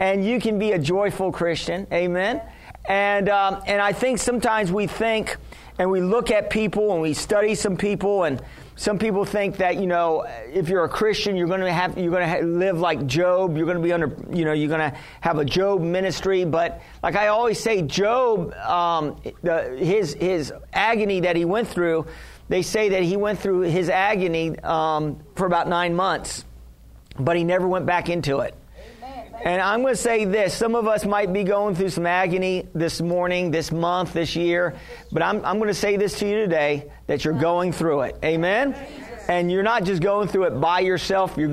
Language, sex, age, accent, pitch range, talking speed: English, male, 40-59, American, 170-210 Hz, 205 wpm